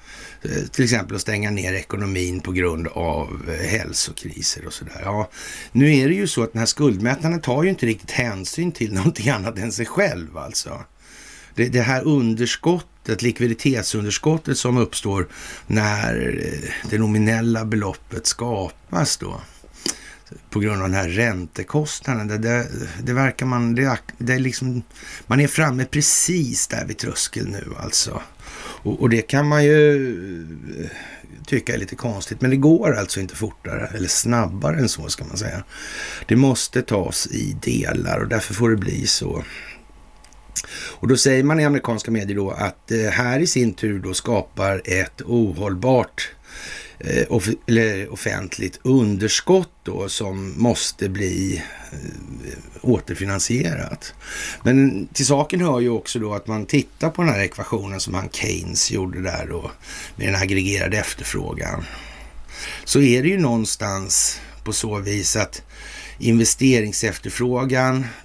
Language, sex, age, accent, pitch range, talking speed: Swedish, male, 60-79, native, 95-130 Hz, 145 wpm